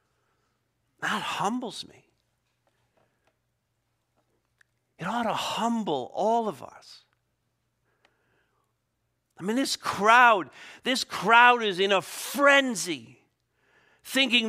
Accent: American